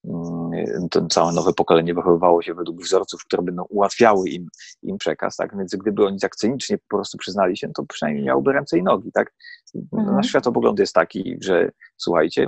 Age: 30-49